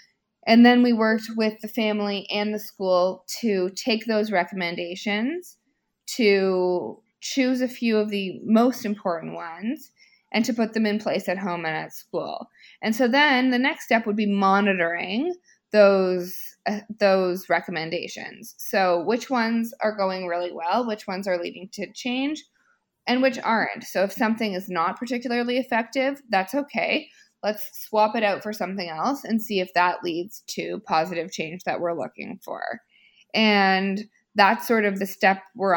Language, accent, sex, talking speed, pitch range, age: English, American, female, 165 wpm, 180-230 Hz, 20-39